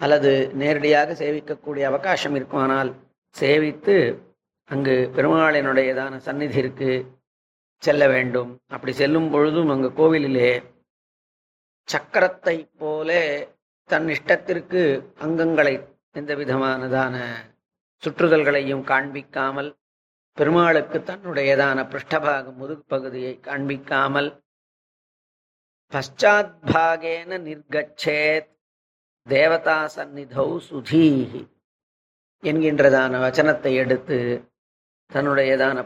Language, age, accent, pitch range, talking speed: Tamil, 40-59, native, 130-155 Hz, 65 wpm